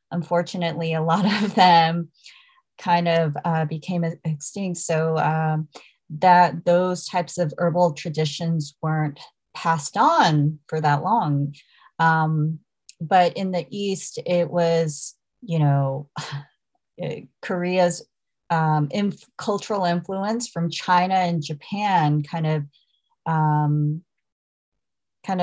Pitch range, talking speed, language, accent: 155-185 Hz, 110 wpm, English, American